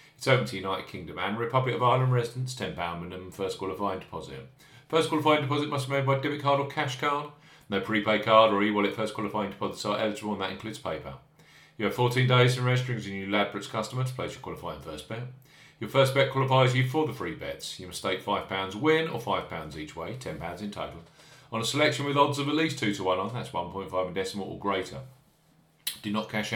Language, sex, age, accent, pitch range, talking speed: English, male, 40-59, British, 100-150 Hz, 220 wpm